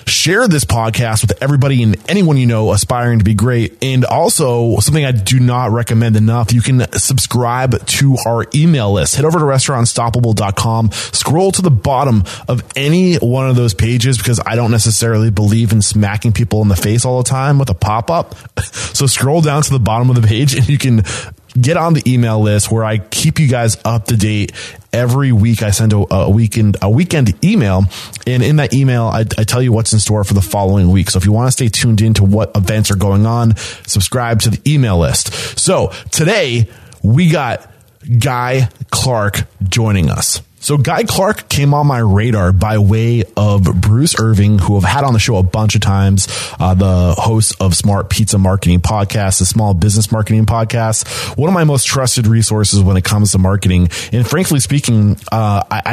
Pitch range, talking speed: 105-125 Hz, 200 wpm